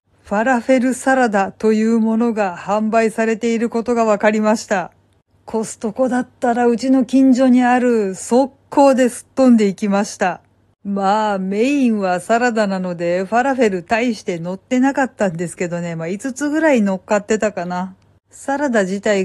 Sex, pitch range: female, 195-250 Hz